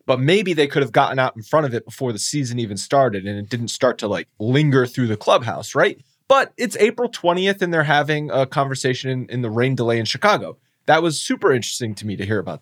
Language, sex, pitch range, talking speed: English, male, 115-165 Hz, 245 wpm